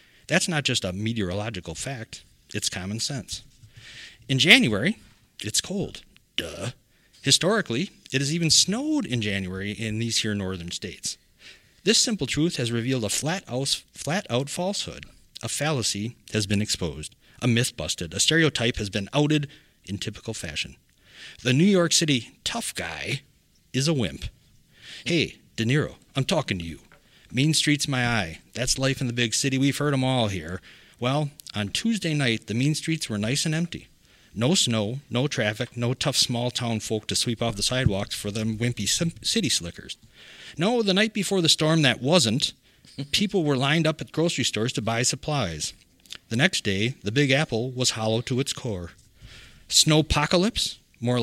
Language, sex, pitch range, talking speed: English, male, 110-150 Hz, 165 wpm